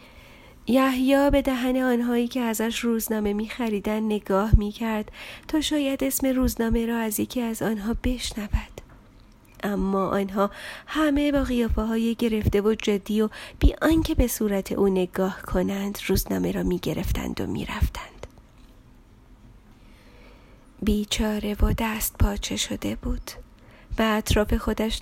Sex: female